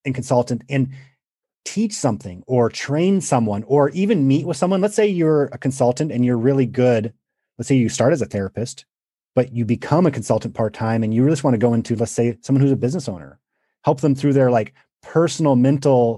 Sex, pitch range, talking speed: male, 115-140 Hz, 210 wpm